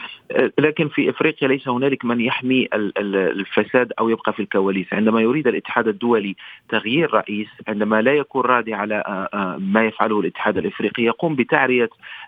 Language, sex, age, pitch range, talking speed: Arabic, male, 40-59, 110-130 Hz, 140 wpm